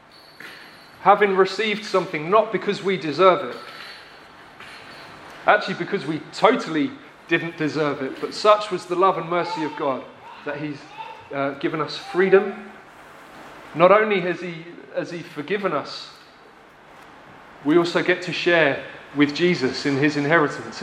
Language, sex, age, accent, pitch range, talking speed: English, male, 30-49, British, 155-200 Hz, 140 wpm